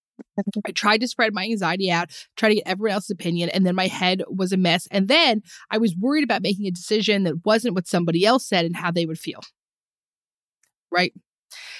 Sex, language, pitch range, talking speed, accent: female, English, 175-235 Hz, 210 wpm, American